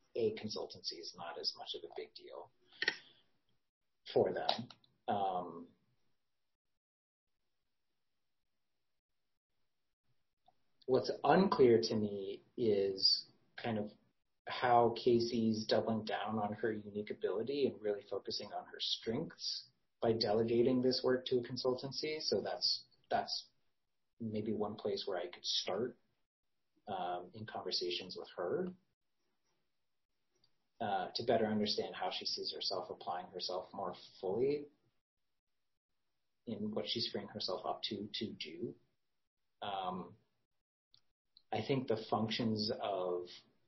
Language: English